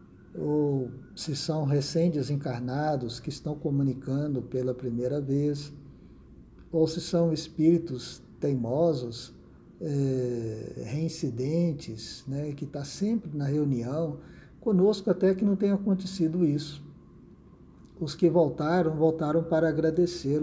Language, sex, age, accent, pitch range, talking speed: Portuguese, male, 50-69, Brazilian, 140-175 Hz, 105 wpm